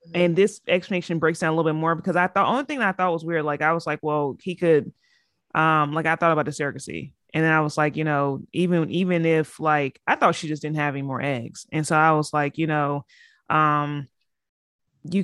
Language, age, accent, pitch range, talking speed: English, 30-49, American, 150-175 Hz, 240 wpm